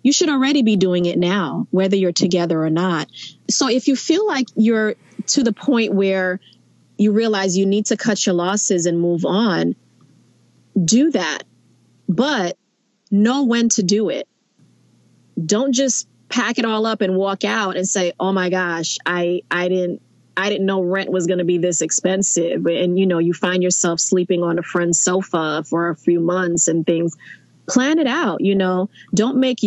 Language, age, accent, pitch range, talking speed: English, 30-49, American, 175-210 Hz, 185 wpm